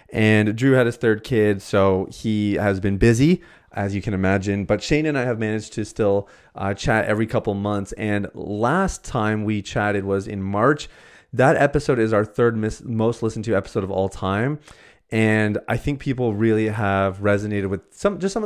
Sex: male